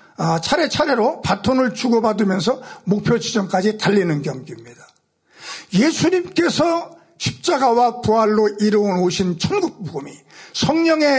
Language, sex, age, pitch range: Korean, male, 50-69, 225-310 Hz